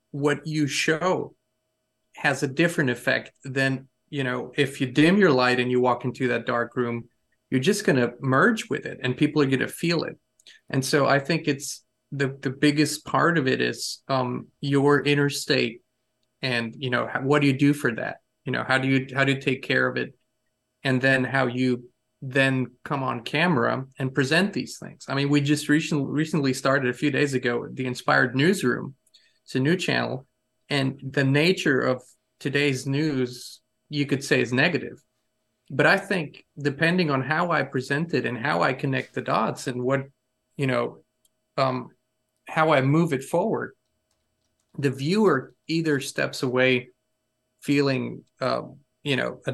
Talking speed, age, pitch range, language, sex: 180 wpm, 30-49, 125-145 Hz, English, male